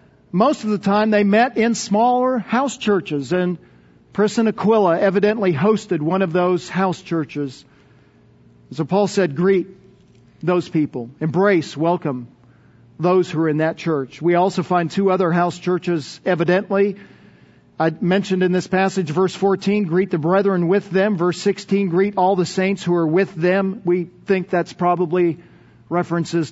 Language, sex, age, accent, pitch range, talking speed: English, male, 50-69, American, 165-200 Hz, 155 wpm